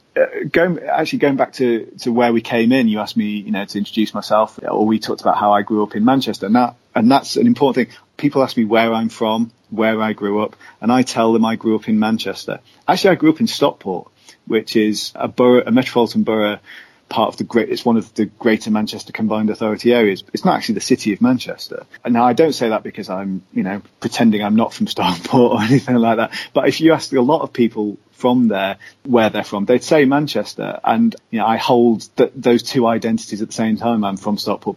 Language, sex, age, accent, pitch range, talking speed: English, male, 30-49, British, 110-145 Hz, 240 wpm